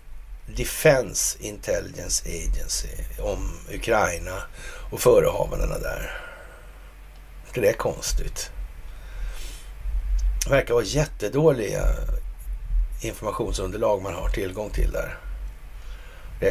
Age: 60-79